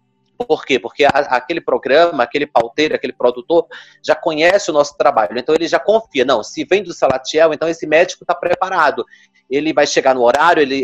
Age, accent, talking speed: 30-49, Brazilian, 190 wpm